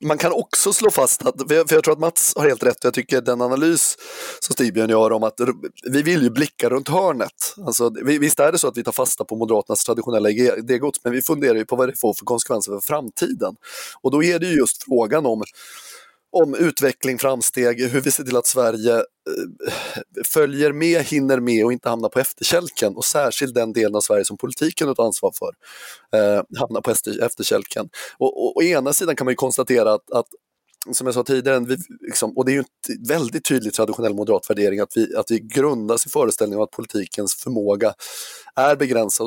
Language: Swedish